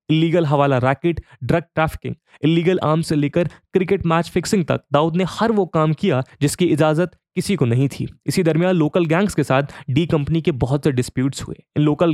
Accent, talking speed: Indian, 195 wpm